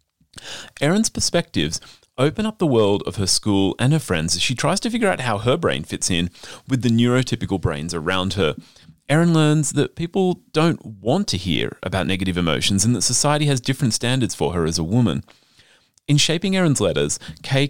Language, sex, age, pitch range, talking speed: English, male, 30-49, 95-135 Hz, 190 wpm